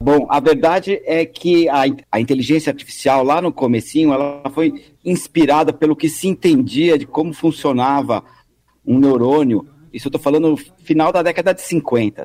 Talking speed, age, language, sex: 165 wpm, 50-69, Portuguese, male